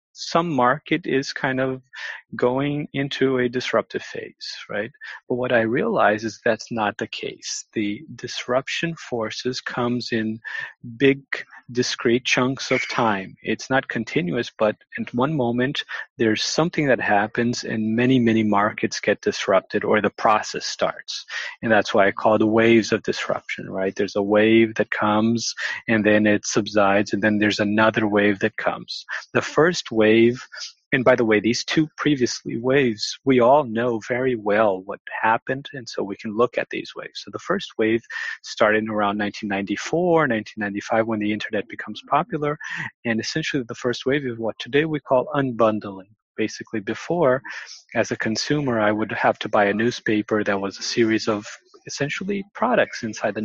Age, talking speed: 30-49, 165 wpm